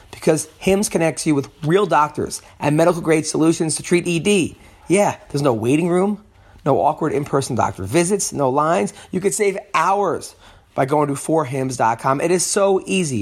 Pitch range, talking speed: 130-175 Hz, 165 wpm